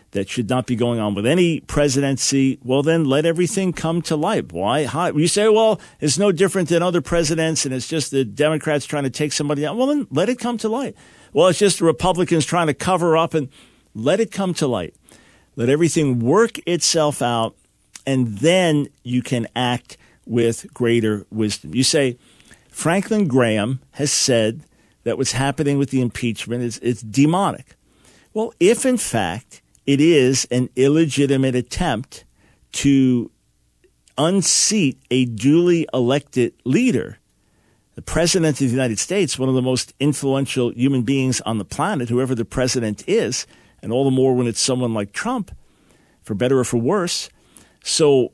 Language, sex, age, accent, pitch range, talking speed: English, male, 50-69, American, 125-165 Hz, 170 wpm